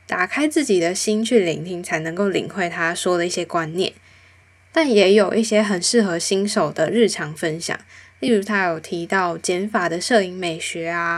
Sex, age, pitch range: female, 10-29, 175-215 Hz